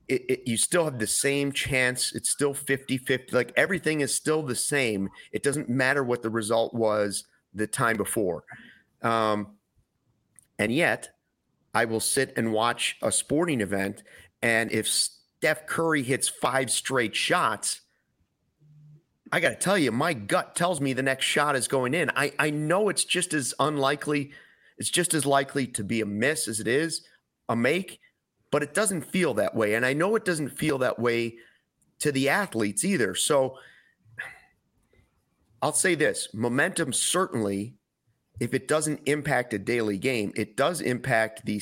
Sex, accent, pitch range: male, American, 110-145 Hz